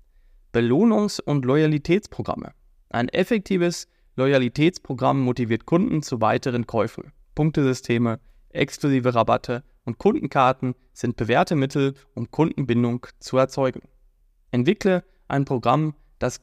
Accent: German